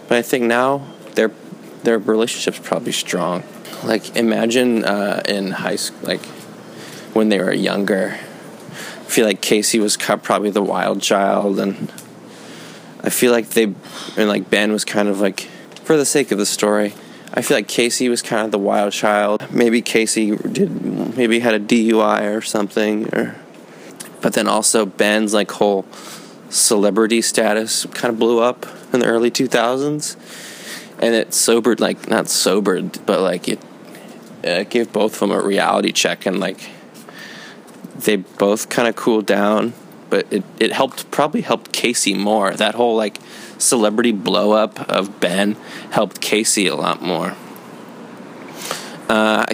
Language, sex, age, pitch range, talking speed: English, male, 20-39, 105-120 Hz, 160 wpm